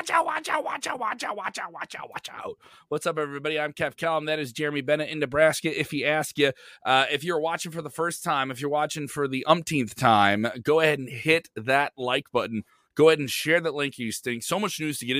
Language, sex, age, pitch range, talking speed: English, male, 30-49, 120-160 Hz, 255 wpm